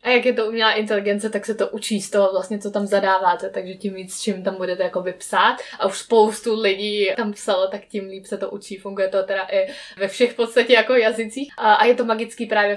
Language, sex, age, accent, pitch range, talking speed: Czech, female, 20-39, native, 195-220 Hz, 235 wpm